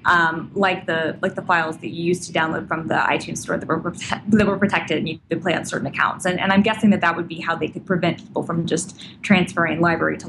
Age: 20-39